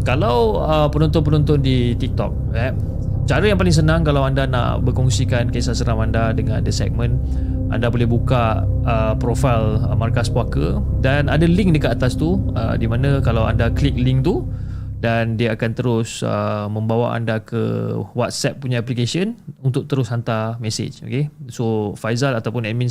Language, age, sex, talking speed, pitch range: Malay, 20-39, male, 165 wpm, 110-130 Hz